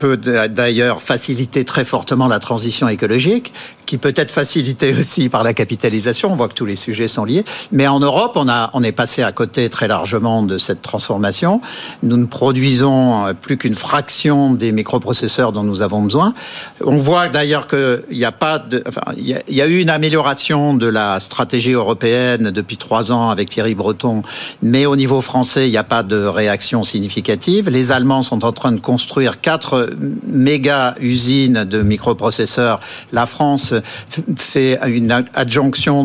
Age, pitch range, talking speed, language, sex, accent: 50-69, 115-150 Hz, 175 wpm, French, male, French